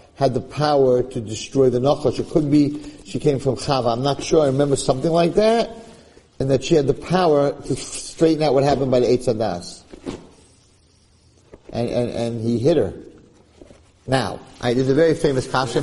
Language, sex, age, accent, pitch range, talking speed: English, male, 50-69, American, 125-170 Hz, 185 wpm